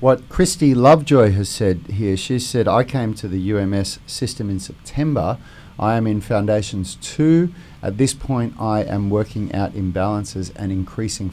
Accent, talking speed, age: Australian, 165 wpm, 40-59